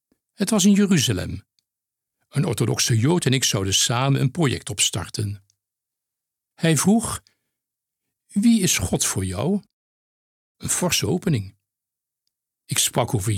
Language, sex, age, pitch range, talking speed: Dutch, male, 60-79, 115-165 Hz, 120 wpm